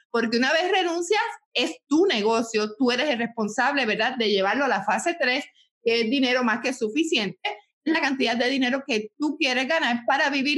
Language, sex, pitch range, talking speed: Spanish, female, 215-275 Hz, 200 wpm